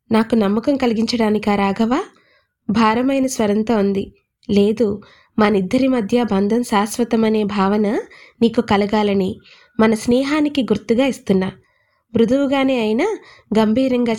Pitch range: 210-250 Hz